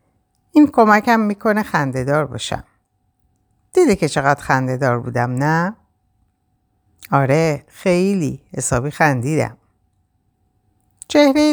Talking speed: 95 wpm